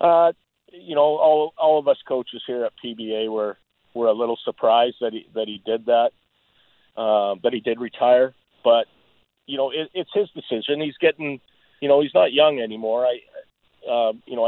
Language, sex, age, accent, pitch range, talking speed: English, male, 50-69, American, 115-140 Hz, 195 wpm